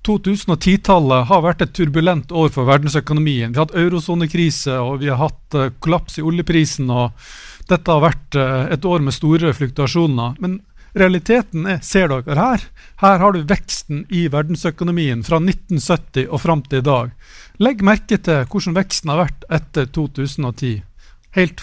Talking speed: 160 wpm